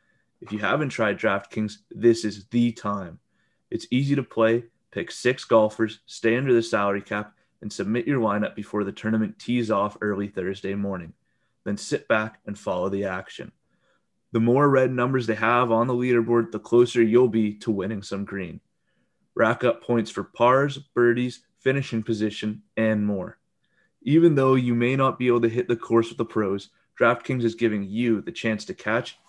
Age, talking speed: 20-39, 180 wpm